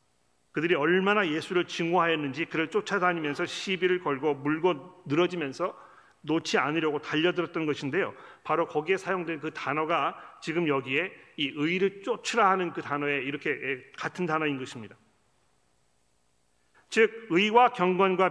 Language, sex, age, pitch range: Korean, male, 40-59, 140-180 Hz